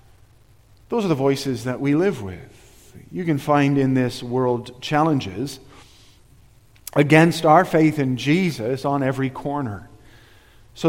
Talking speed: 130 wpm